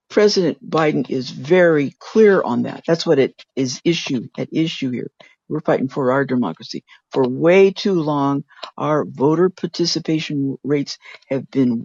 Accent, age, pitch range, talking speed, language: American, 60-79, 145-200 Hz, 150 wpm, English